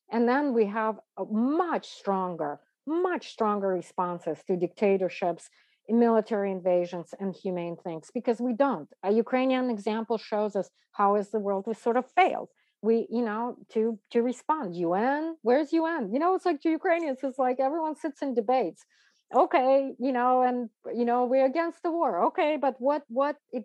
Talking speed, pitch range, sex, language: 180 wpm, 195-255 Hz, female, English